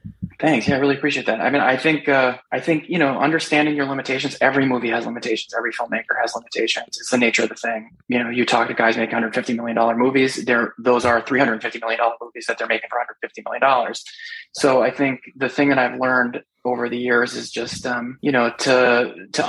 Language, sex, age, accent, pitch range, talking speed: English, male, 20-39, American, 120-135 Hz, 230 wpm